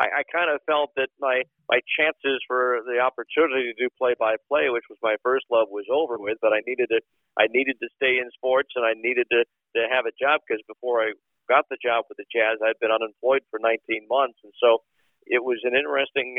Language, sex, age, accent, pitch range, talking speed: English, male, 50-69, American, 115-135 Hz, 225 wpm